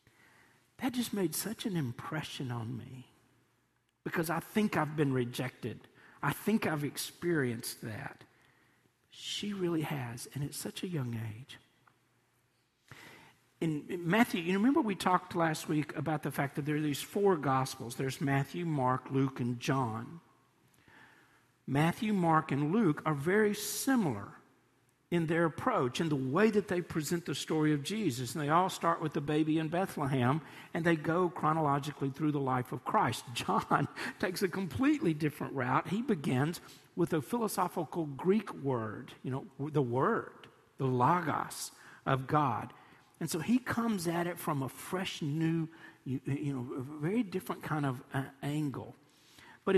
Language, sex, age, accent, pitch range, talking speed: English, male, 50-69, American, 135-175 Hz, 160 wpm